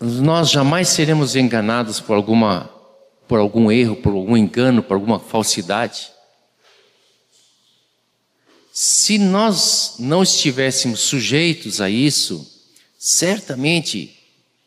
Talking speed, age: 95 wpm, 50-69